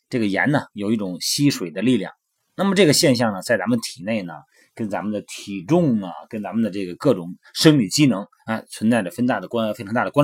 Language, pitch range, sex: Chinese, 110-185 Hz, male